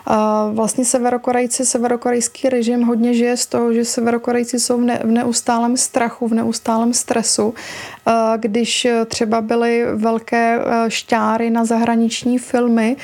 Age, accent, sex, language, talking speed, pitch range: 30-49, native, female, Czech, 115 wpm, 230-245 Hz